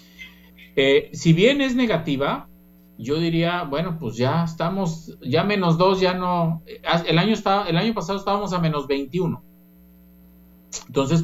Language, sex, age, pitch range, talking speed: Spanish, male, 50-69, 110-165 Hz, 135 wpm